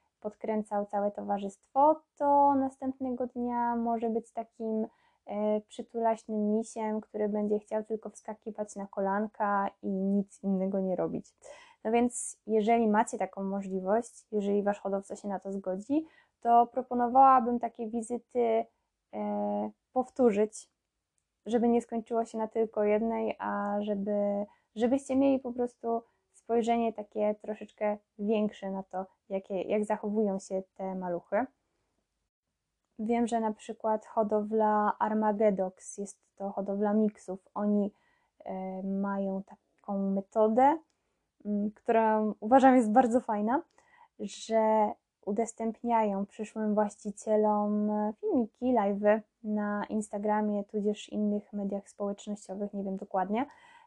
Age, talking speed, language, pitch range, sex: 10-29, 115 wpm, Polish, 205-235 Hz, female